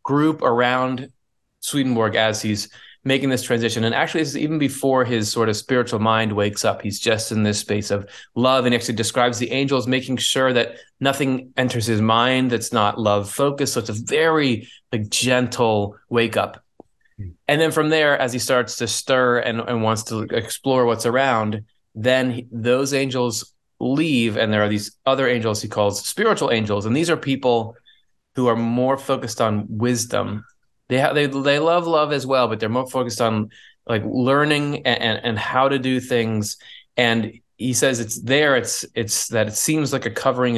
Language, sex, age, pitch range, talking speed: English, male, 20-39, 110-130 Hz, 185 wpm